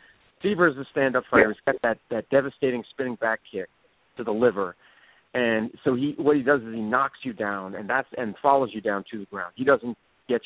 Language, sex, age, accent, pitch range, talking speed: English, male, 40-59, American, 110-140 Hz, 225 wpm